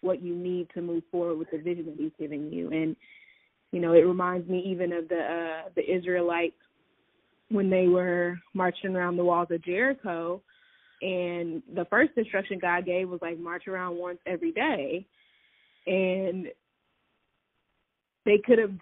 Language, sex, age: English, female, 20-39